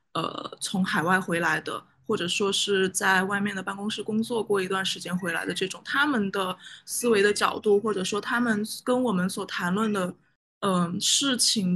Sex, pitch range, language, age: female, 190-220 Hz, Chinese, 20-39